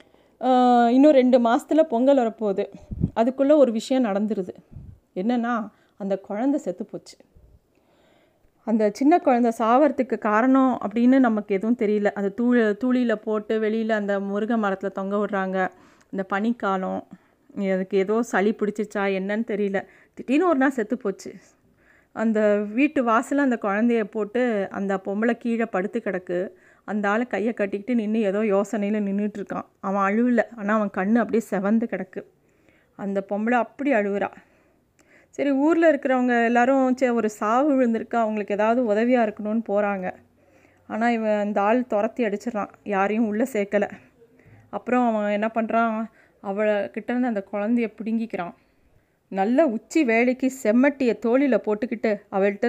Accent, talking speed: native, 130 wpm